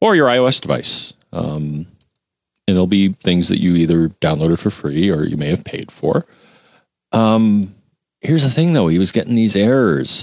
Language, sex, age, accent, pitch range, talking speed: English, male, 40-59, American, 95-140 Hz, 180 wpm